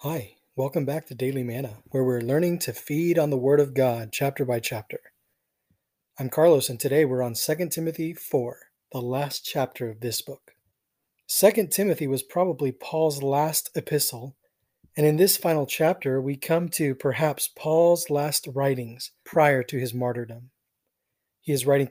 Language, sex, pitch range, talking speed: English, male, 130-160 Hz, 165 wpm